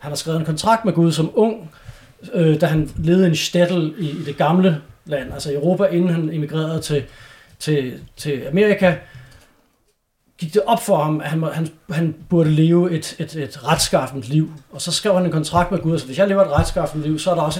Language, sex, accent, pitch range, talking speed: English, male, Danish, 145-180 Hz, 220 wpm